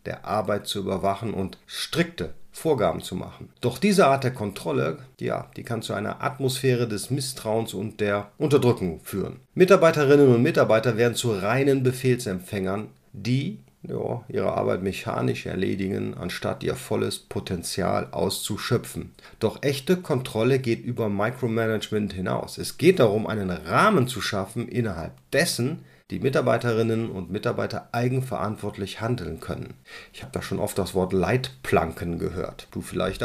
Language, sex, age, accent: German, male, 40-59, German